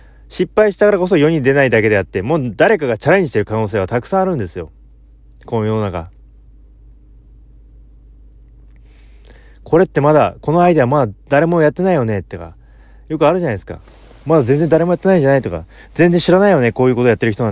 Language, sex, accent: Japanese, male, native